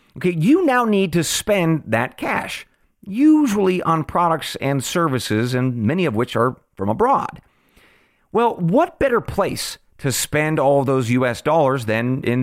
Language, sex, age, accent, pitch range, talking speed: English, male, 40-59, American, 125-175 Hz, 155 wpm